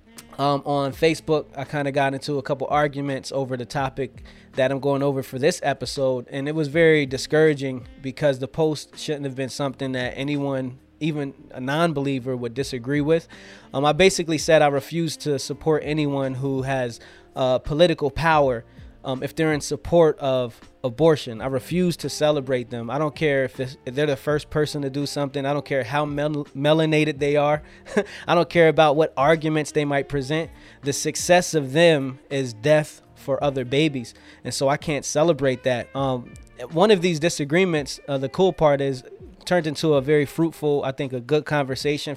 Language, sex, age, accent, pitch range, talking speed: English, male, 20-39, American, 135-155 Hz, 185 wpm